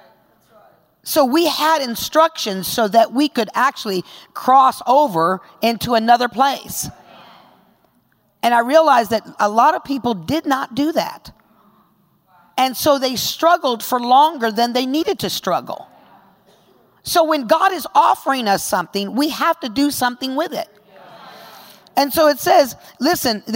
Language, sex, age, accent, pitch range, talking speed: English, female, 50-69, American, 220-300 Hz, 145 wpm